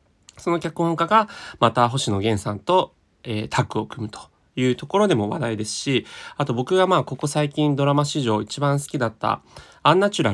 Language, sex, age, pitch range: Japanese, male, 20-39, 110-155 Hz